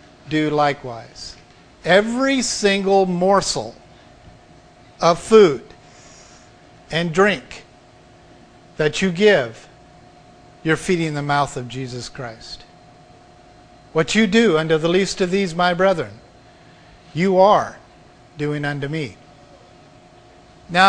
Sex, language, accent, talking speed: male, English, American, 100 wpm